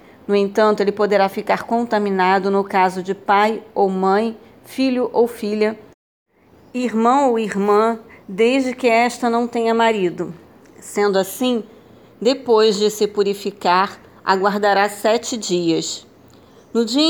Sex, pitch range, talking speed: female, 195-225 Hz, 125 wpm